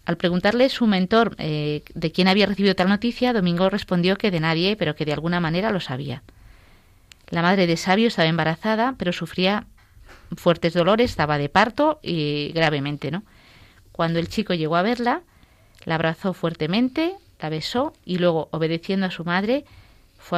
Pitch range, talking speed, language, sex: 150-195 Hz, 170 wpm, Spanish, female